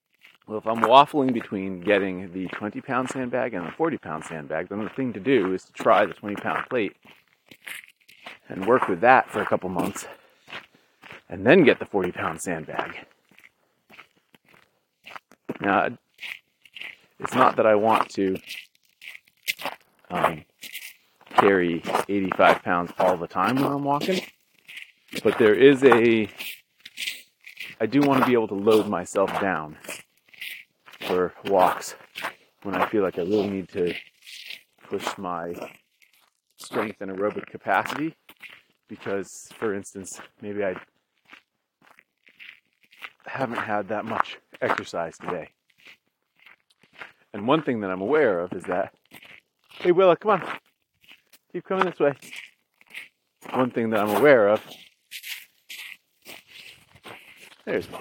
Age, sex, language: 30-49, male, English